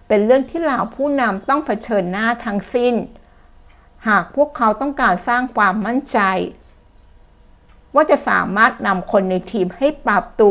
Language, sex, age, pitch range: Thai, female, 60-79, 190-230 Hz